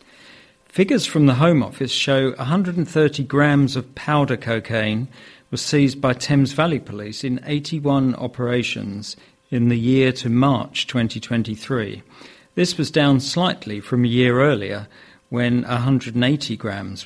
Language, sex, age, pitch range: English, male, 50-69, 115-140 Hz